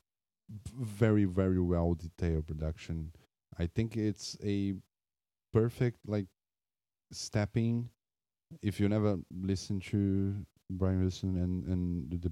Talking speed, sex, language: 100 wpm, male, English